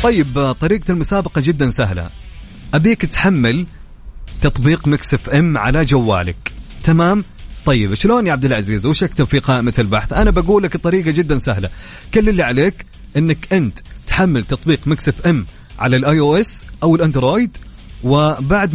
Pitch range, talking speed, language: 125-180 Hz, 140 wpm, Arabic